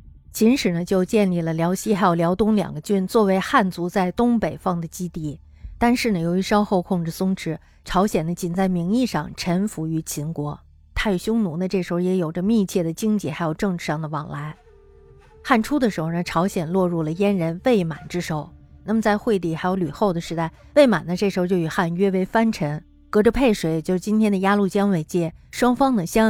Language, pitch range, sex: Chinese, 165-210 Hz, female